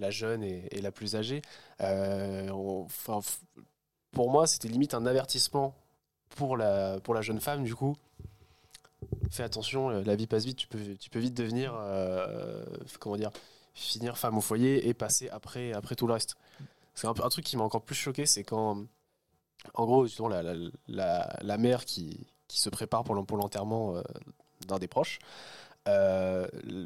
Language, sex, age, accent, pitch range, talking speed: French, male, 20-39, French, 105-130 Hz, 150 wpm